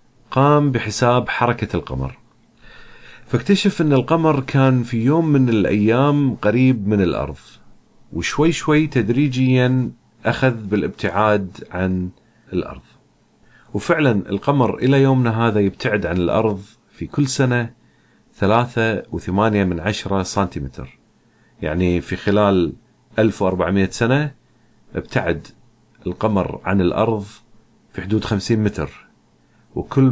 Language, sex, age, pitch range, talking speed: Arabic, male, 40-59, 95-120 Hz, 105 wpm